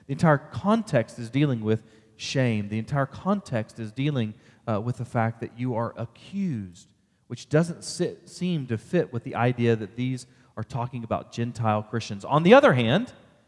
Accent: American